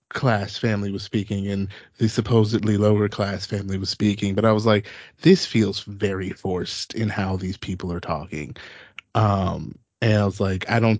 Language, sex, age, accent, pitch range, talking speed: English, male, 20-39, American, 100-135 Hz, 180 wpm